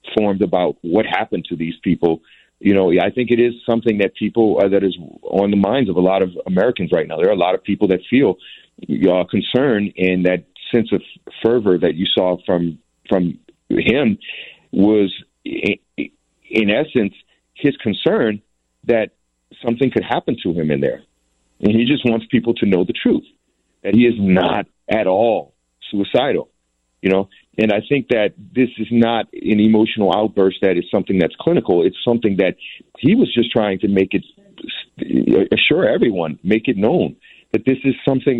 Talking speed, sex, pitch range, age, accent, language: 185 wpm, male, 90-115 Hz, 40-59, American, English